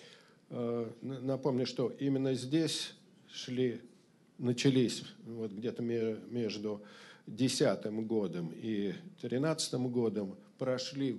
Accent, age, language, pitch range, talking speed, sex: native, 50-69, Russian, 115-155 Hz, 75 wpm, male